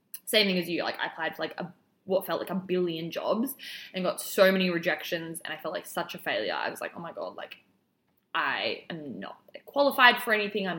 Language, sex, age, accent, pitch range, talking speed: English, female, 20-39, Australian, 170-215 Hz, 235 wpm